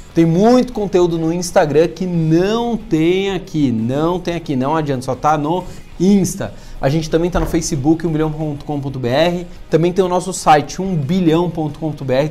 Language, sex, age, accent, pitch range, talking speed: Portuguese, male, 30-49, Brazilian, 145-185 Hz, 155 wpm